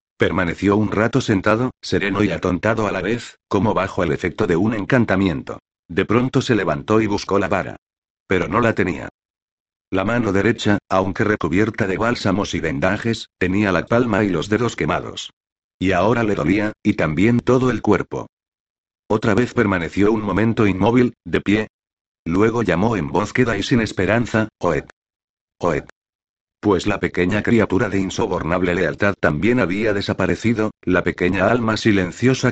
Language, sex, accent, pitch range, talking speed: Spanish, male, Spanish, 95-115 Hz, 160 wpm